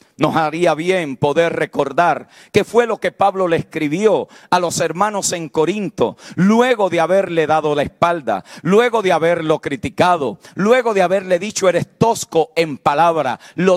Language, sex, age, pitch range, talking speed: Spanish, male, 50-69, 160-210 Hz, 155 wpm